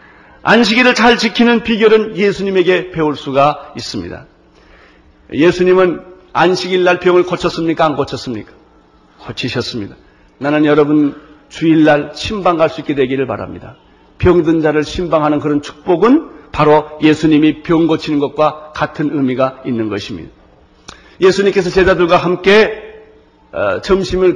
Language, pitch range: Korean, 150-205 Hz